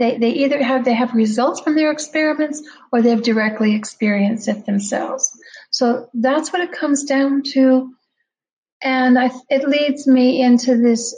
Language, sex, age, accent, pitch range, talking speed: English, female, 60-79, American, 230-265 Hz, 165 wpm